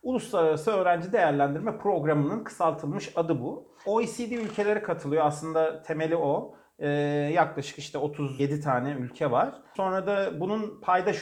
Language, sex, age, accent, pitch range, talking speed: Turkish, male, 40-59, native, 140-195 Hz, 130 wpm